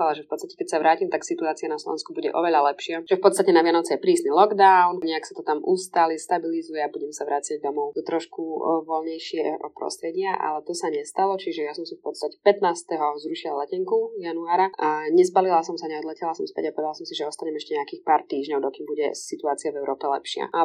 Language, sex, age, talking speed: Slovak, female, 20-39, 220 wpm